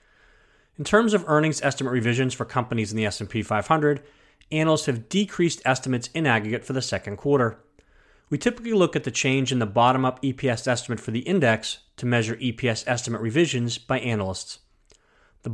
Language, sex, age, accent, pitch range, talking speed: English, male, 30-49, American, 110-140 Hz, 170 wpm